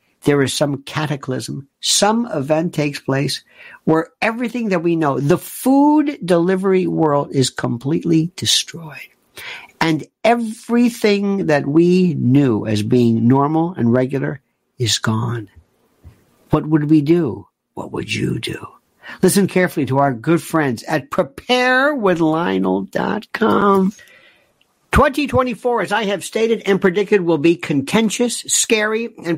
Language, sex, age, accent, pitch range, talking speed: English, male, 60-79, American, 155-240 Hz, 125 wpm